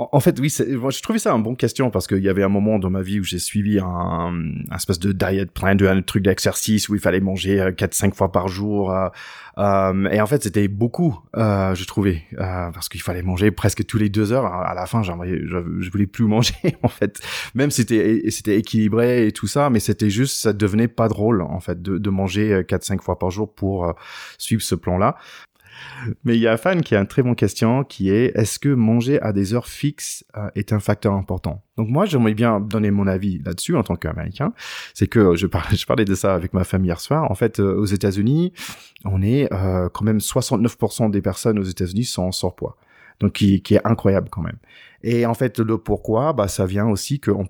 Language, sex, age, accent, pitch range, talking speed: French, male, 20-39, French, 95-115 Hz, 235 wpm